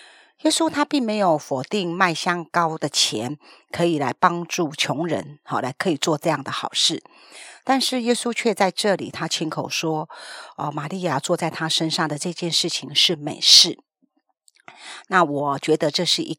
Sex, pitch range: female, 160-220 Hz